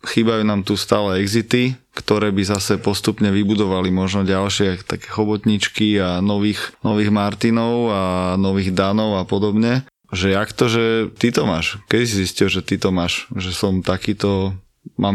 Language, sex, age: Slovak, male, 20-39